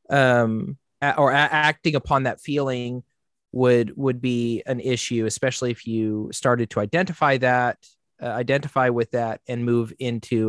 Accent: American